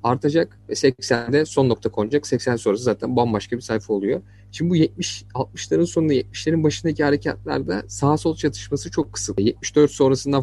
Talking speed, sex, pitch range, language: 150 wpm, male, 105-135 Hz, Turkish